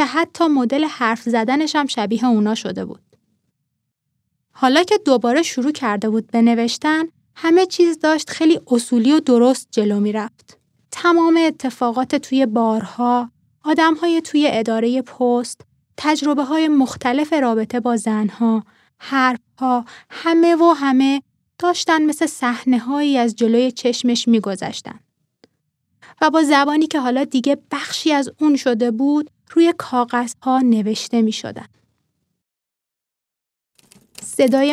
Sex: female